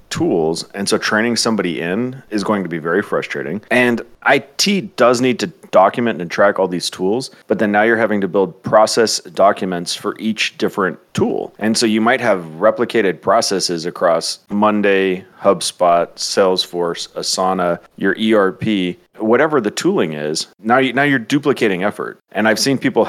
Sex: male